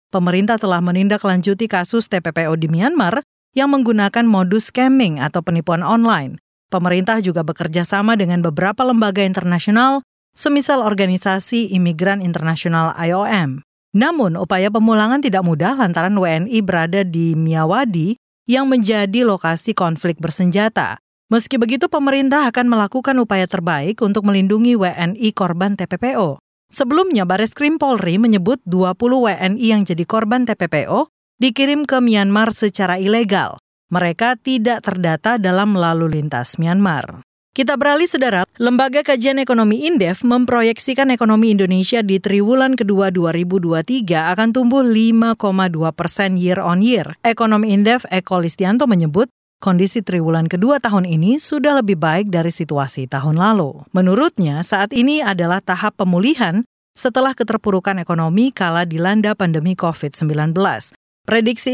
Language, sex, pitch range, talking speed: Indonesian, female, 180-235 Hz, 125 wpm